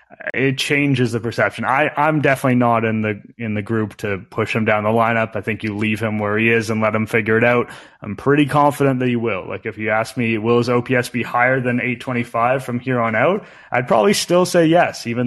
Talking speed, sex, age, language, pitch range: 240 wpm, male, 20-39, English, 115-145 Hz